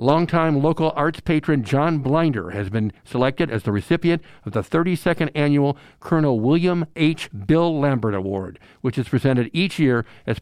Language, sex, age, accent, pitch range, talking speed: English, male, 60-79, American, 110-140 Hz, 160 wpm